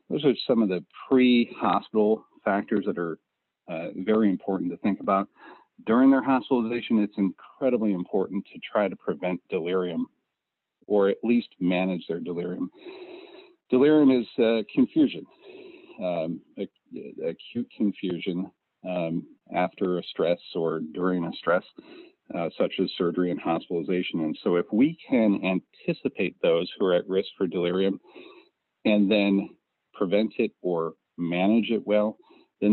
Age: 40-59